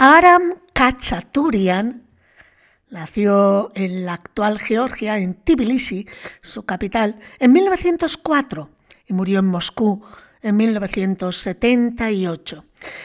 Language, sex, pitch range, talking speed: Spanish, female, 210-270 Hz, 85 wpm